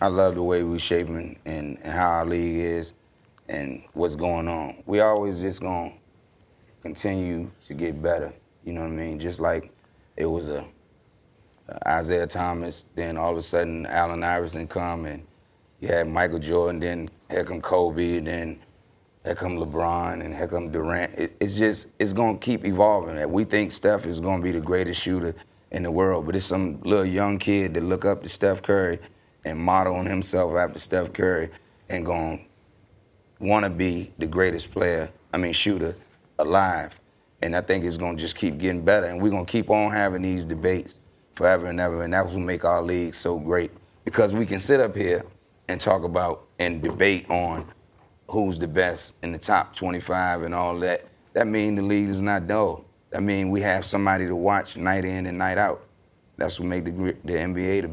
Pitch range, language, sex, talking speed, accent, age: 85-100 Hz, English, male, 200 wpm, American, 30-49